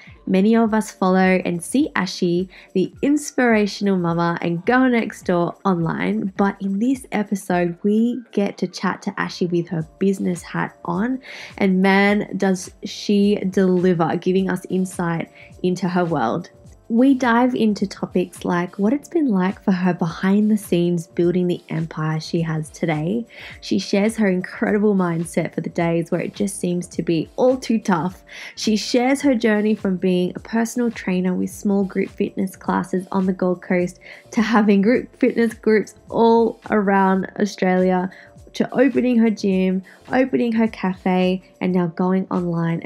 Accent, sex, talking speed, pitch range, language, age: Australian, female, 160 wpm, 180-220 Hz, English, 20-39